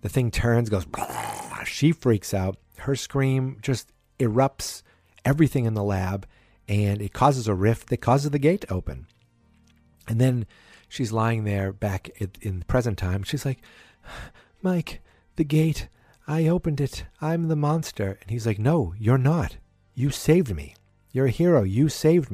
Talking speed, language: 165 wpm, English